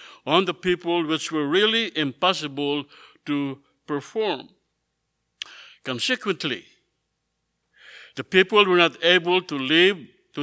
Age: 60-79